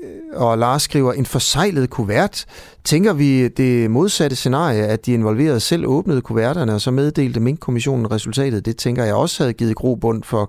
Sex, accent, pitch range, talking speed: male, native, 105-145 Hz, 175 wpm